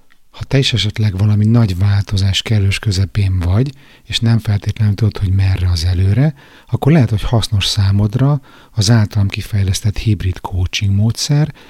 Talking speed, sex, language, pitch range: 150 wpm, male, Hungarian, 100-120 Hz